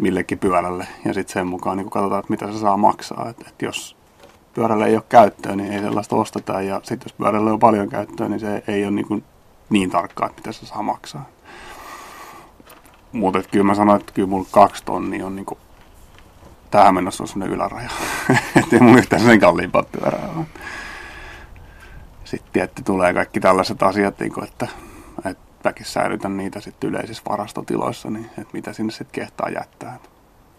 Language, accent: Finnish, native